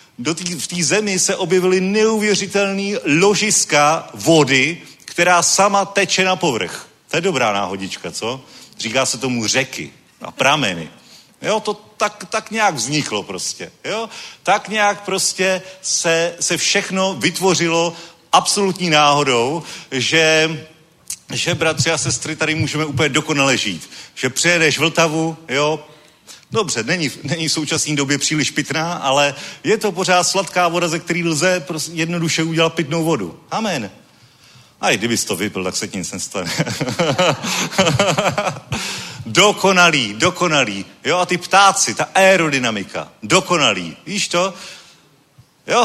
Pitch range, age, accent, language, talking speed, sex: 150-190 Hz, 40-59, native, Czech, 135 wpm, male